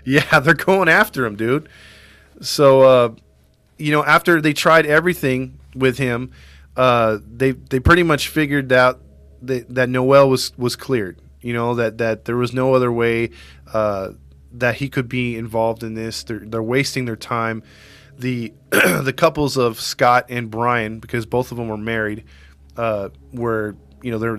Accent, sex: American, male